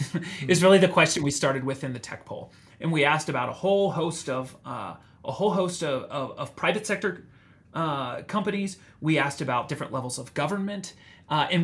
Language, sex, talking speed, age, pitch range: English, male, 200 wpm, 30-49, 130-165 Hz